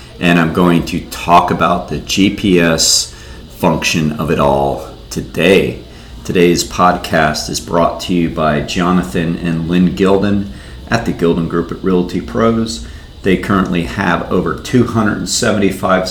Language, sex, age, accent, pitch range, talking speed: English, male, 40-59, American, 75-95 Hz, 135 wpm